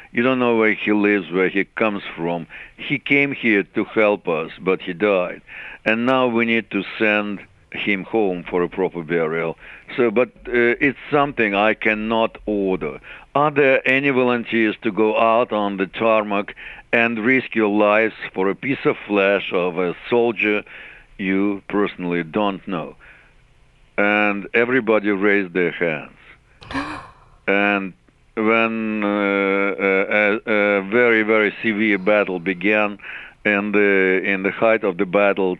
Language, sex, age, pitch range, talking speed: English, male, 50-69, 95-115 Hz, 150 wpm